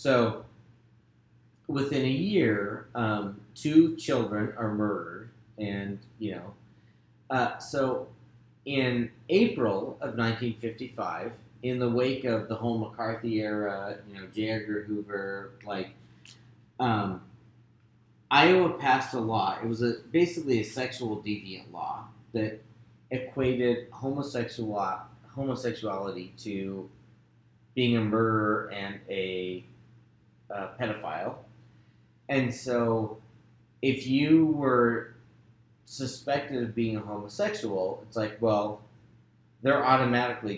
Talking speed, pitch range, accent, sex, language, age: 105 wpm, 105-120 Hz, American, male, English, 30-49